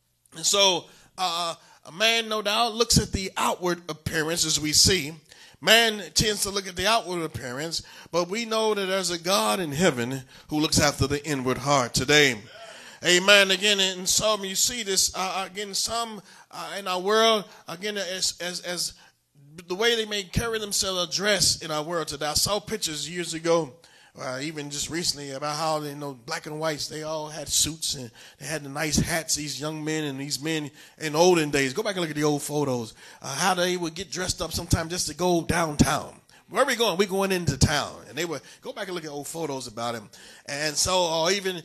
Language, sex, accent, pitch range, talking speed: English, male, American, 150-190 Hz, 215 wpm